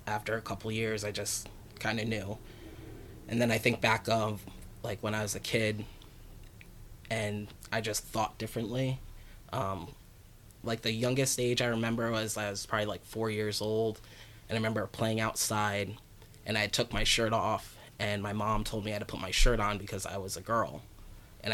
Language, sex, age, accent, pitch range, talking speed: English, male, 20-39, American, 105-110 Hz, 200 wpm